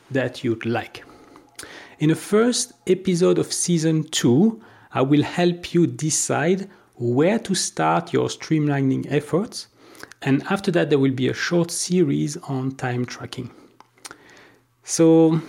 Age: 40-59